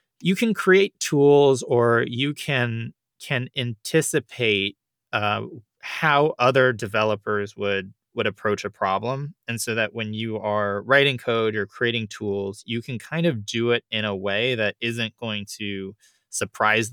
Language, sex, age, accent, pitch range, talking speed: English, male, 20-39, American, 100-120 Hz, 150 wpm